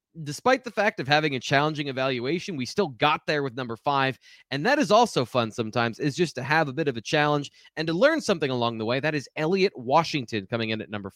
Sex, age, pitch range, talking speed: male, 20-39, 130-175 Hz, 240 wpm